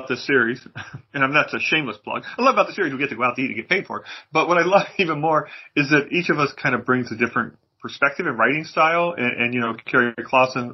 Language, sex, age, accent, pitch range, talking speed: English, male, 40-59, American, 115-145 Hz, 290 wpm